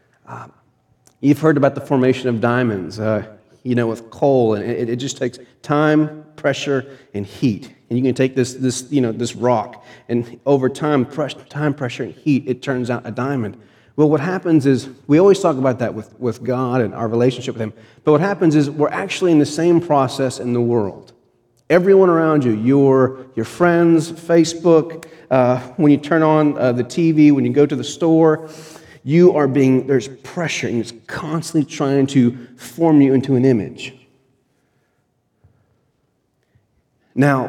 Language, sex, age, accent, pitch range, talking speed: English, male, 40-59, American, 120-155 Hz, 180 wpm